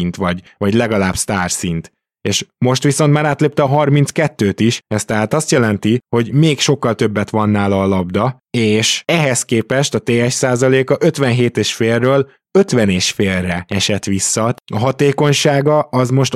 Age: 20-39